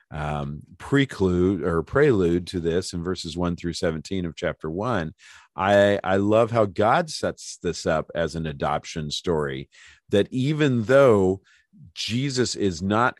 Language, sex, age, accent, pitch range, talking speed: English, male, 40-59, American, 85-105 Hz, 145 wpm